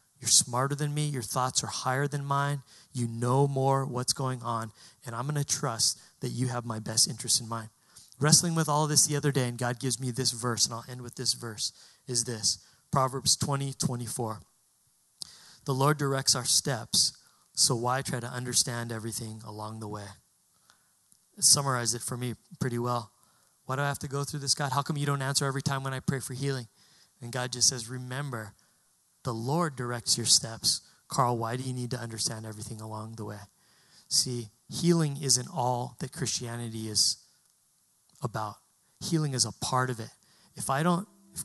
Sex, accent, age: male, American, 30-49